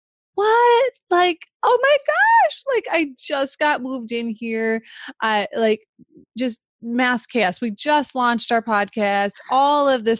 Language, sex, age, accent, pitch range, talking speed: English, female, 20-39, American, 215-305 Hz, 145 wpm